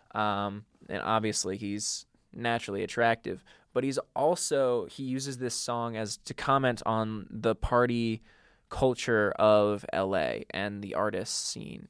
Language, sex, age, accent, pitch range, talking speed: English, male, 20-39, American, 105-125 Hz, 130 wpm